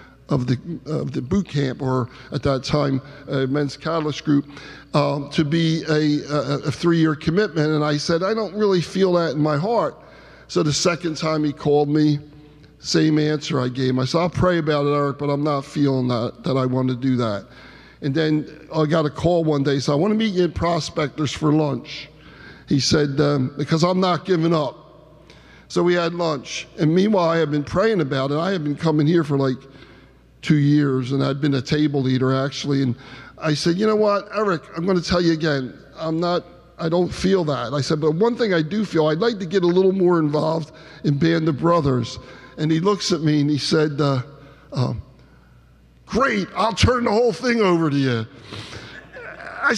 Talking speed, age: 210 wpm, 50-69